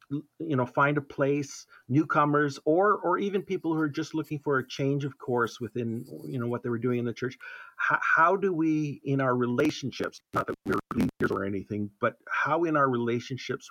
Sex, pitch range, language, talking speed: male, 120-155 Hz, English, 205 wpm